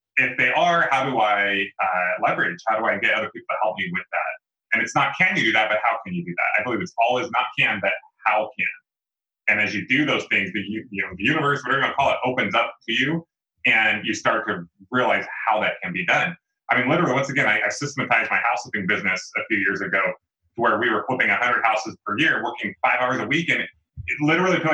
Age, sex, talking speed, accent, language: 30-49, male, 260 wpm, American, English